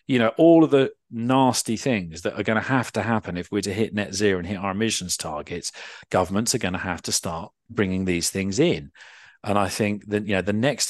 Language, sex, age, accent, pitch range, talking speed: English, male, 40-59, British, 95-110 Hz, 240 wpm